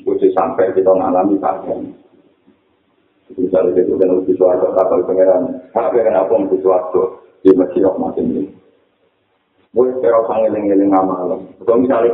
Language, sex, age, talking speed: Indonesian, male, 50-69, 85 wpm